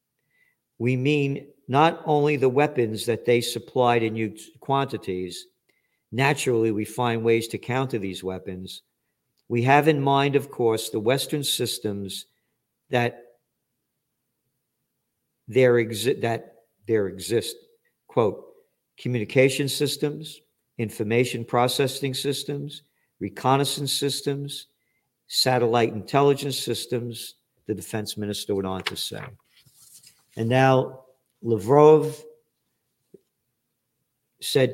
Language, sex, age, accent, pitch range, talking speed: English, male, 50-69, American, 110-140 Hz, 95 wpm